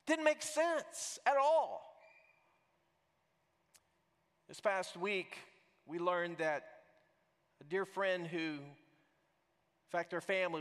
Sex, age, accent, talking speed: male, 40-59, American, 105 wpm